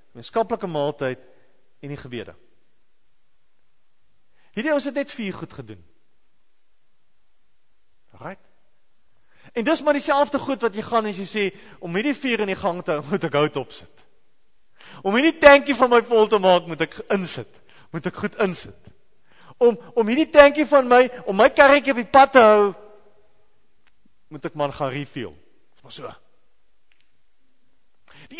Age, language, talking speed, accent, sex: 40-59, English, 170 wpm, Dutch, male